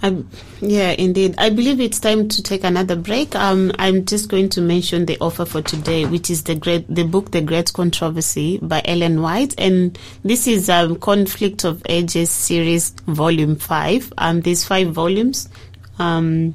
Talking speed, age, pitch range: 175 wpm, 30-49, 165-190 Hz